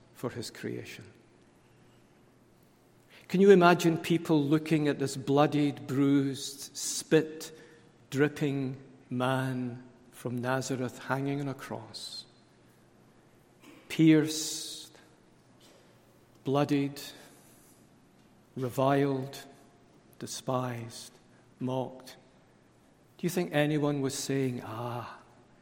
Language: English